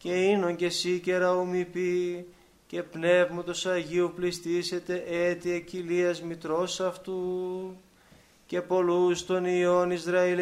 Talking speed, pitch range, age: 105 wpm, 175-185 Hz, 20-39